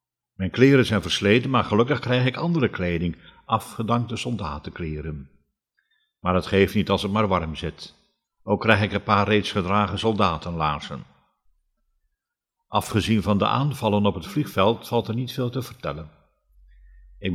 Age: 50-69